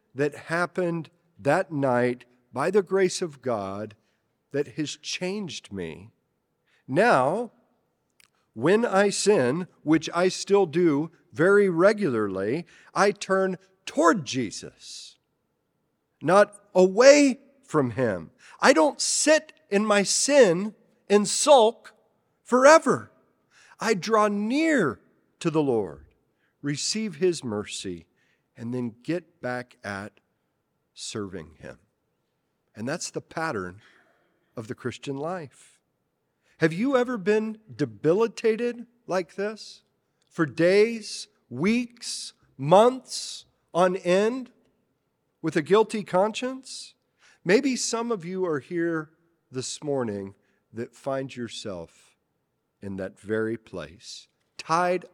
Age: 50-69